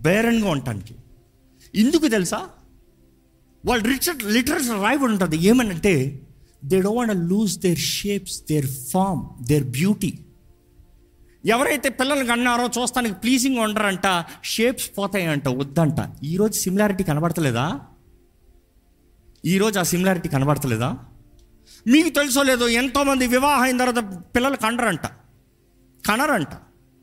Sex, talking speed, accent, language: male, 100 wpm, native, Telugu